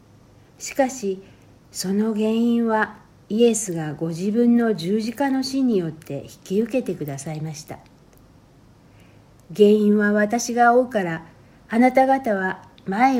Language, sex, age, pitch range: Japanese, female, 60-79, 145-220 Hz